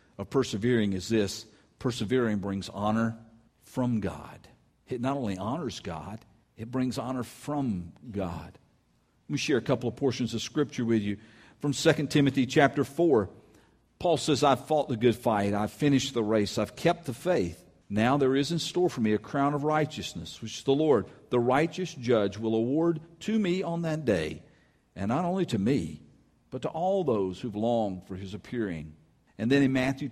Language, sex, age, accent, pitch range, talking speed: English, male, 50-69, American, 100-140 Hz, 185 wpm